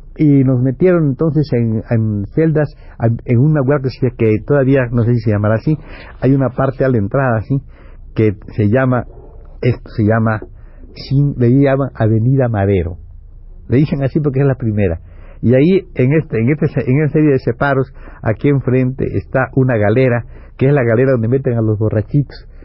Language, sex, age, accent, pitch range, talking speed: Spanish, male, 60-79, Mexican, 110-140 Hz, 180 wpm